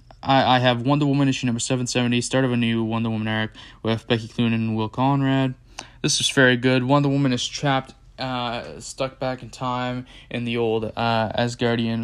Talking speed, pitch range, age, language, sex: 190 wpm, 115-125 Hz, 10-29, English, male